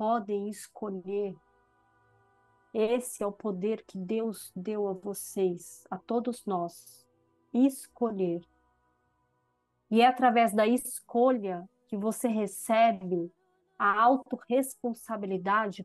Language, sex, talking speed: English, female, 95 wpm